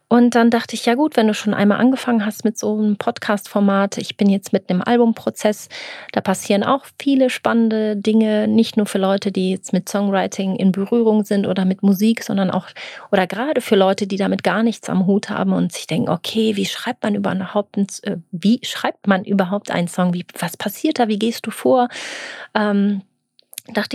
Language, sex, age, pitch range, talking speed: German, female, 30-49, 190-235 Hz, 195 wpm